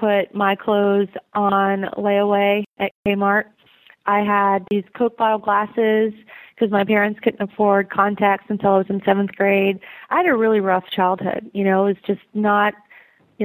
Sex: female